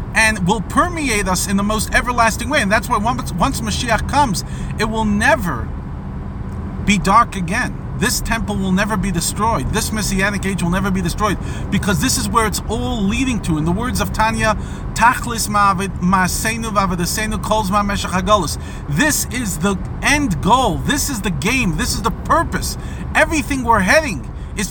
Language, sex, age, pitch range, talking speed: English, male, 40-59, 190-245 Hz, 165 wpm